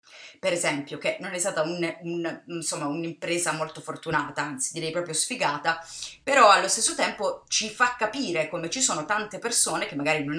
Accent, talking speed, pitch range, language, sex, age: native, 160 wpm, 150-185 Hz, Italian, female, 30-49